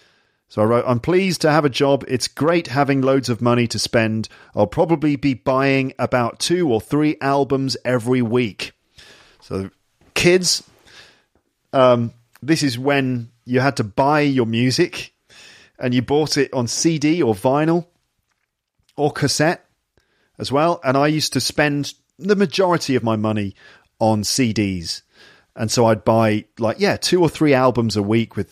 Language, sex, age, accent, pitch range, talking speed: English, male, 40-59, British, 110-150 Hz, 160 wpm